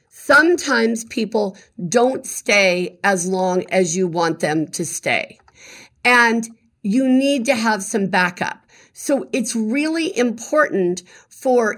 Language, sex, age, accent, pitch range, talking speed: English, female, 50-69, American, 195-240 Hz, 120 wpm